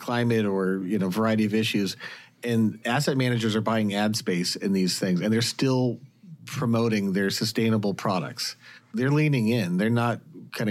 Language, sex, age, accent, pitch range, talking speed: English, male, 40-59, American, 105-125 Hz, 170 wpm